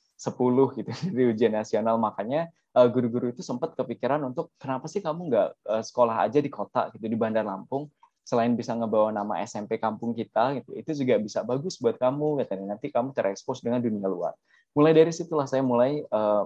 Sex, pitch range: male, 105-135 Hz